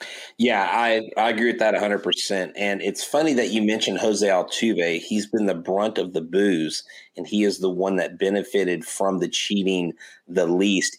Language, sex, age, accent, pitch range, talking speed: English, male, 30-49, American, 95-115 Hz, 190 wpm